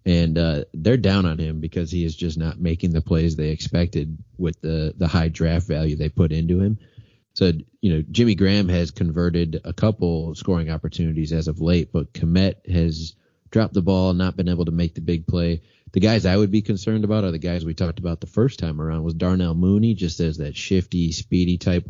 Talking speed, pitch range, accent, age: 220 wpm, 85-105 Hz, American, 30-49